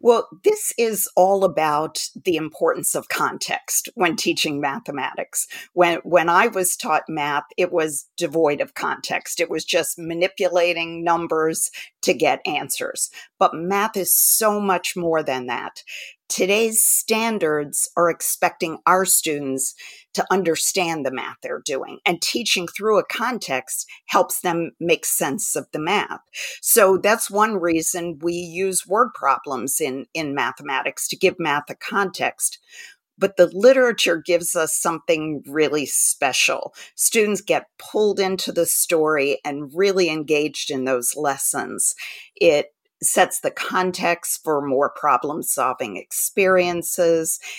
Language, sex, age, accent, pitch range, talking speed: English, female, 50-69, American, 160-200 Hz, 135 wpm